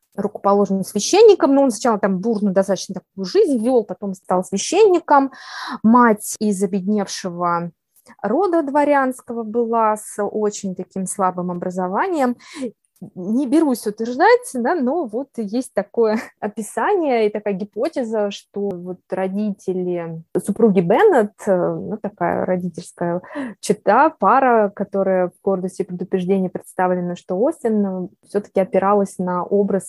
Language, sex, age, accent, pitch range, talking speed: Russian, female, 20-39, native, 190-240 Hz, 120 wpm